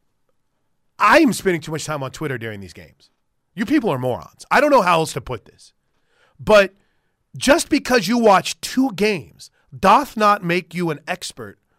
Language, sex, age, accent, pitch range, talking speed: English, male, 30-49, American, 145-205 Hz, 180 wpm